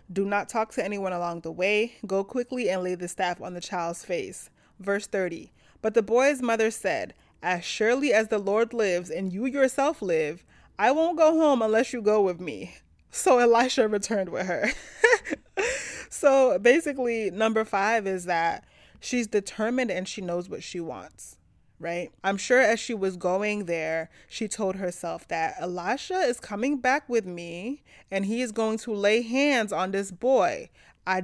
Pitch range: 185-240 Hz